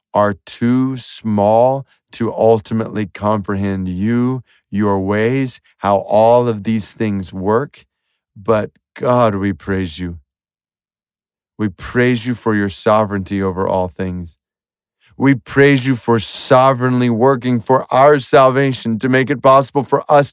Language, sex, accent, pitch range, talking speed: English, male, American, 115-150 Hz, 130 wpm